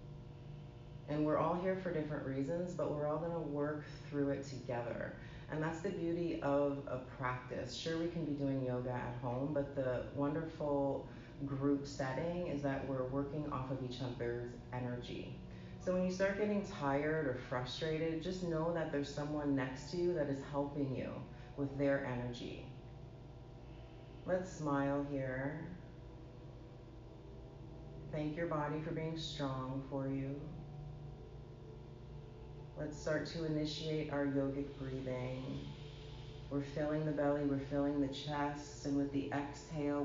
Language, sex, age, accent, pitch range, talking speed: English, female, 30-49, American, 130-150 Hz, 145 wpm